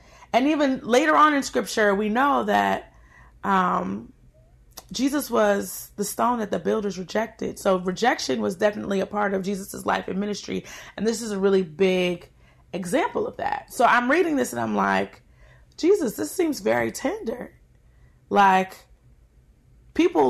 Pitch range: 195-305 Hz